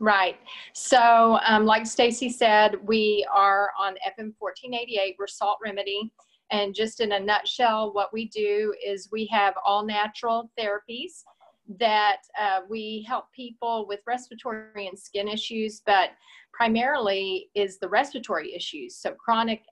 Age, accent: 40-59, American